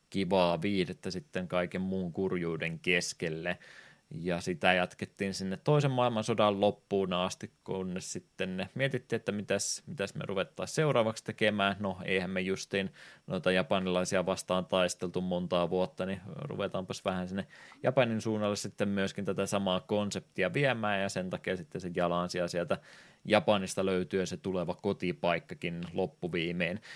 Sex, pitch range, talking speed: male, 90-105 Hz, 135 wpm